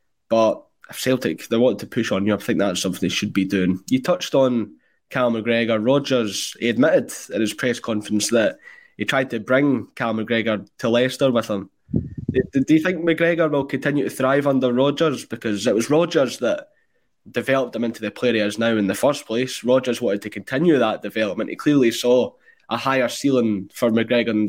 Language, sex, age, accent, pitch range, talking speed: English, male, 20-39, British, 110-135 Hz, 200 wpm